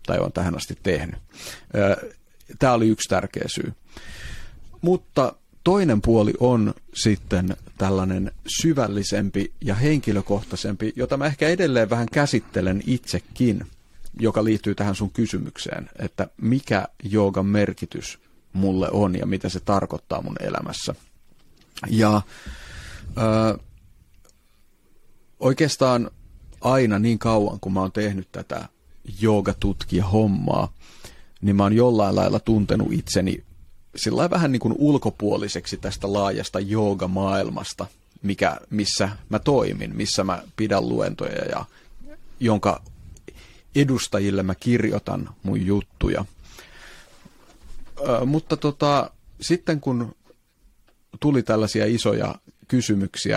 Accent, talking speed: native, 105 wpm